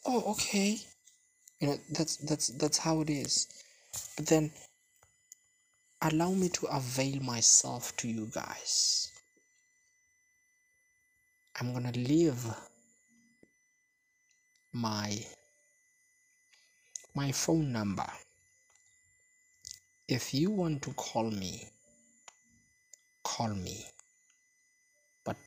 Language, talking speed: English, 85 wpm